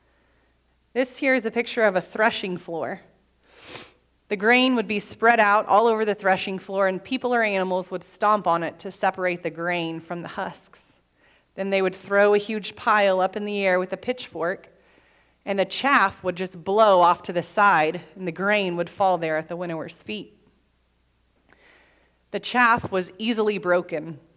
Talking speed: 180 wpm